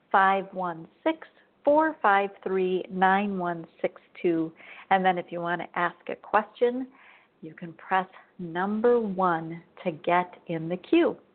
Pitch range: 175-210 Hz